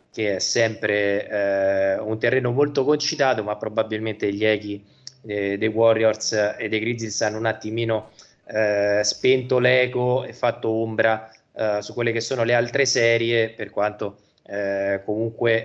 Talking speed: 150 wpm